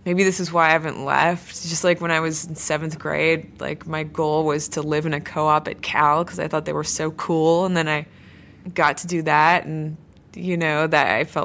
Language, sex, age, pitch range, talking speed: English, female, 20-39, 150-170 Hz, 240 wpm